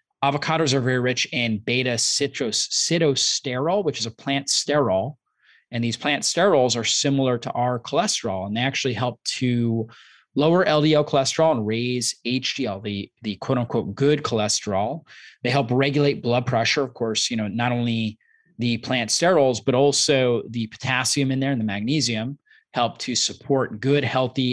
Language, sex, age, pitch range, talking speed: English, male, 30-49, 115-135 Hz, 160 wpm